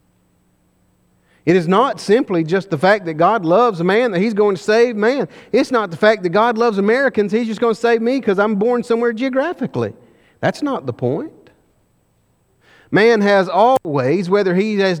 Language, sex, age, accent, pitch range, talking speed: English, male, 40-59, American, 155-210 Hz, 190 wpm